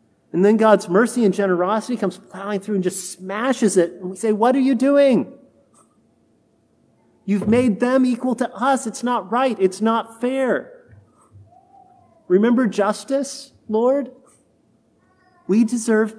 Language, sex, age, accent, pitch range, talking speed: English, male, 40-59, American, 180-235 Hz, 135 wpm